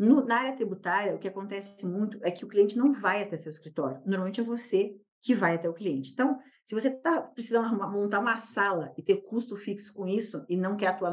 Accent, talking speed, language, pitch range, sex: Brazilian, 225 wpm, Portuguese, 175-230 Hz, female